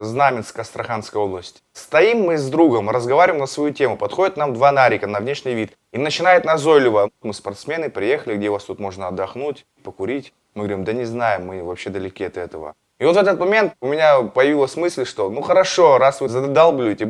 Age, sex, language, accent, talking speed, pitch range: 20-39, male, Russian, native, 195 wpm, 100-145 Hz